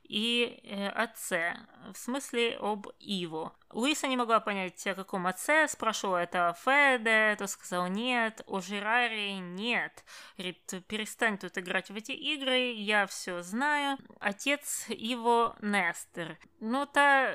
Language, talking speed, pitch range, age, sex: Russian, 130 wpm, 190-245 Hz, 20-39, female